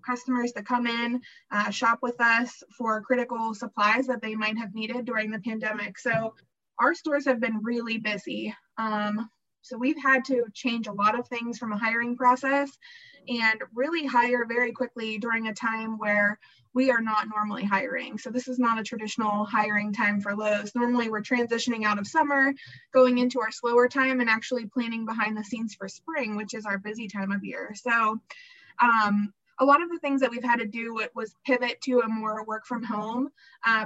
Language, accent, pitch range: English, American, 215-250 Hz